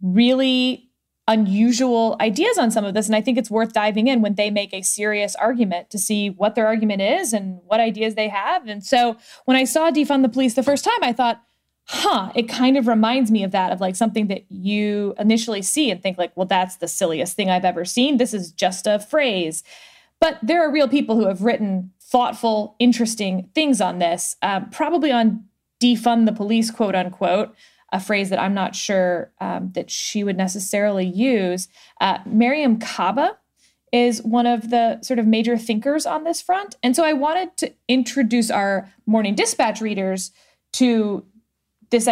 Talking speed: 190 wpm